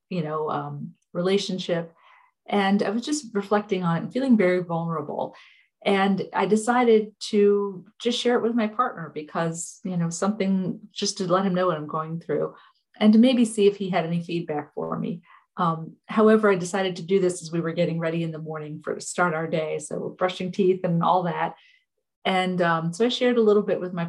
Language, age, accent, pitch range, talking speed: English, 40-59, American, 175-220 Hz, 210 wpm